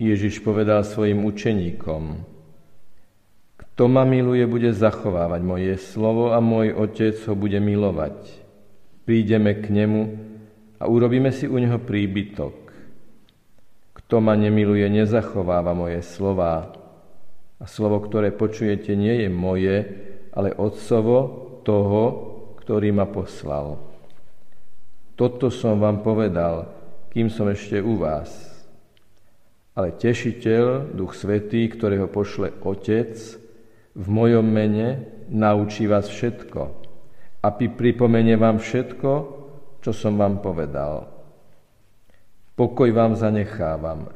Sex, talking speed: male, 105 wpm